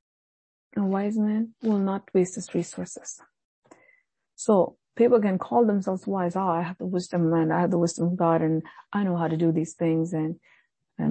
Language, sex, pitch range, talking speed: English, female, 175-235 Hz, 200 wpm